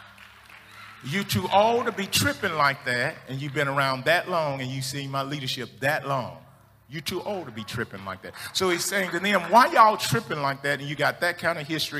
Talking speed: 230 wpm